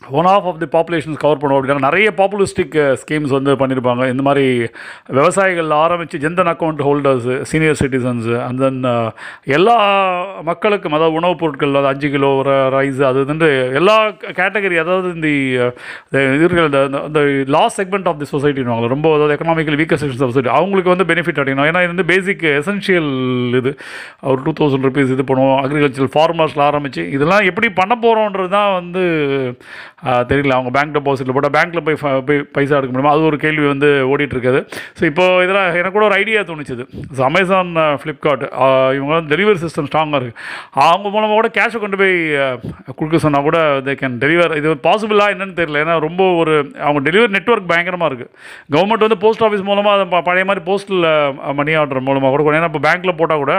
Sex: male